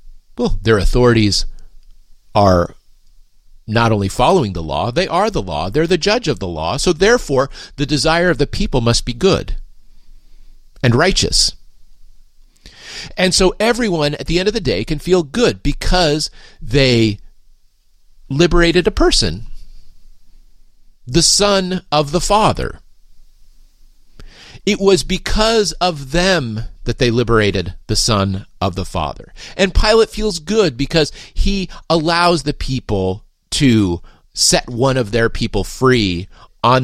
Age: 40-59